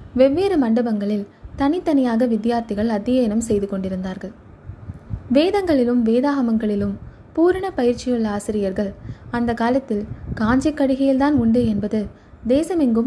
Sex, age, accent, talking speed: female, 20-39, native, 90 wpm